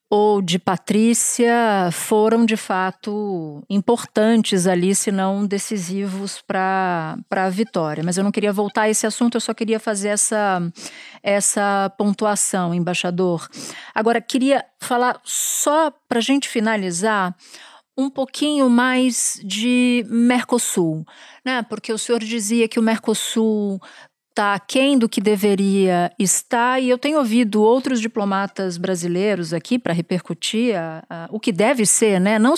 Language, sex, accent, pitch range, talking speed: Portuguese, female, Brazilian, 190-245 Hz, 135 wpm